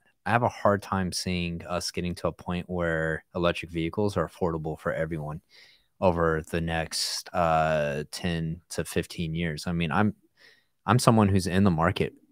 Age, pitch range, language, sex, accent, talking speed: 20-39, 80-95 Hz, English, male, American, 170 wpm